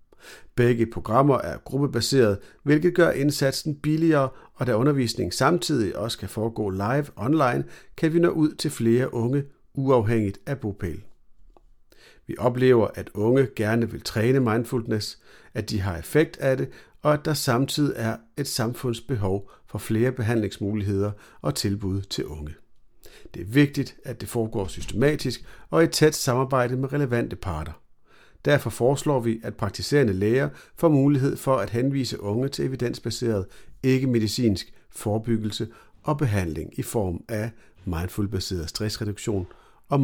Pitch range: 100-135 Hz